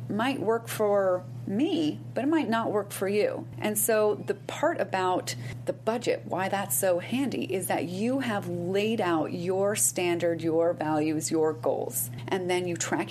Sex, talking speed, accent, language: female, 175 wpm, American, English